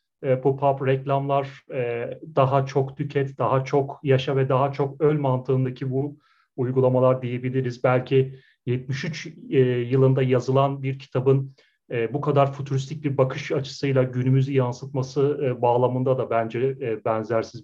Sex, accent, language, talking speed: male, native, Turkish, 120 wpm